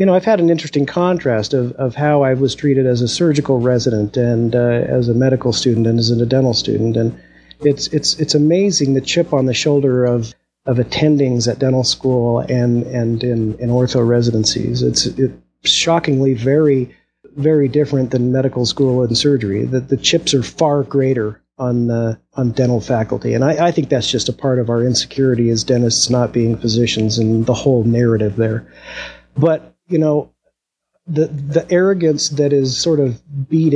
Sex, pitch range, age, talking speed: male, 125-150 Hz, 40-59, 185 wpm